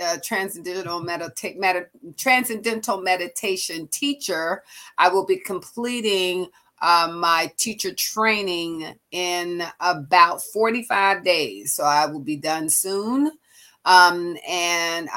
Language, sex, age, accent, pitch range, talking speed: English, female, 40-59, American, 170-205 Hz, 100 wpm